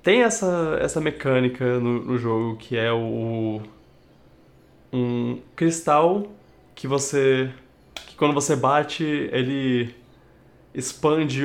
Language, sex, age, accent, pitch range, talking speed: Portuguese, male, 20-39, Brazilian, 125-155 Hz, 110 wpm